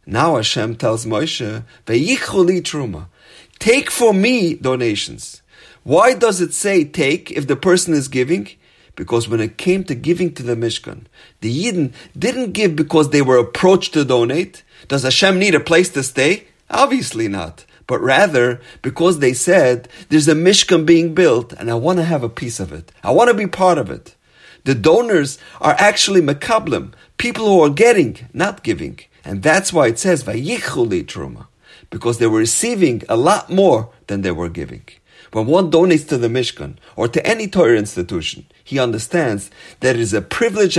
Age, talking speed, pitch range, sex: 40-59, 175 wpm, 120-185 Hz, male